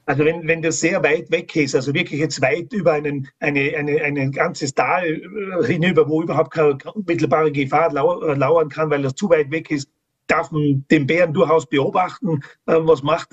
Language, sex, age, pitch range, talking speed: German, male, 40-59, 145-170 Hz, 180 wpm